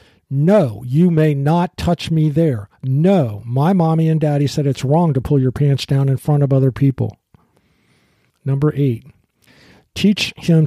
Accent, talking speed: American, 165 wpm